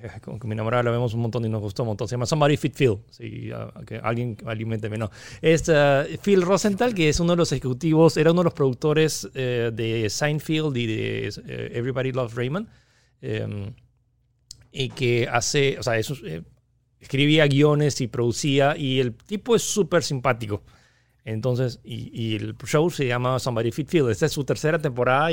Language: Spanish